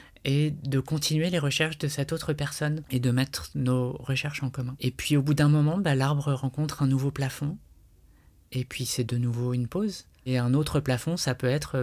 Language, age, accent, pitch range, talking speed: French, 20-39, French, 130-150 Hz, 215 wpm